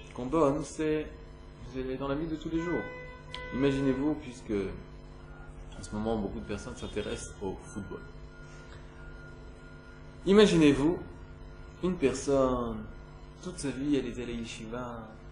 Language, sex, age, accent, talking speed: French, male, 20-39, French, 130 wpm